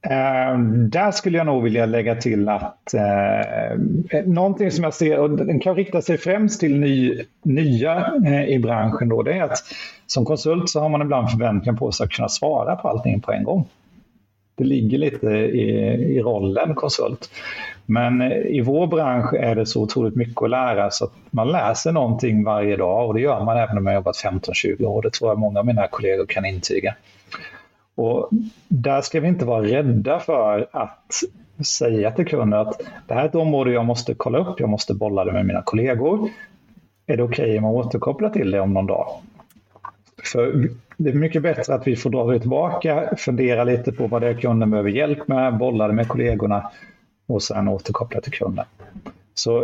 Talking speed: 195 wpm